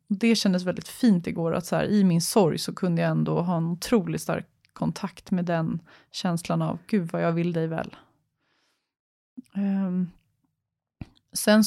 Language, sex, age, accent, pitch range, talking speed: English, female, 20-39, Swedish, 170-205 Hz, 150 wpm